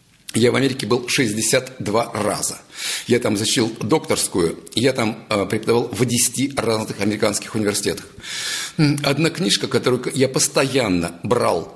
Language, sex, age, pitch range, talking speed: Russian, male, 50-69, 115-155 Hz, 120 wpm